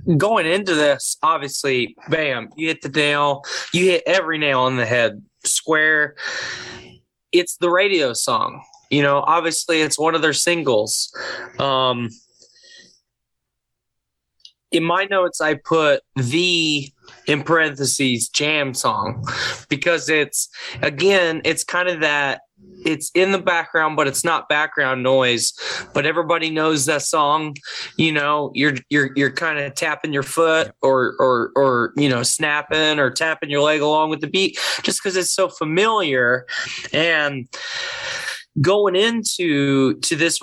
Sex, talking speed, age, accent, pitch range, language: male, 140 wpm, 20-39, American, 140-170 Hz, English